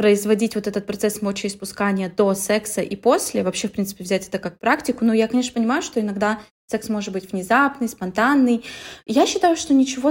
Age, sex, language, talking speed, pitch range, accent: 20-39, female, Russian, 185 wpm, 200-255 Hz, native